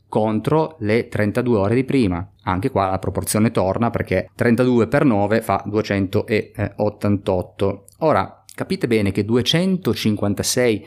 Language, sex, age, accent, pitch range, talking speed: Italian, male, 30-49, native, 95-115 Hz, 120 wpm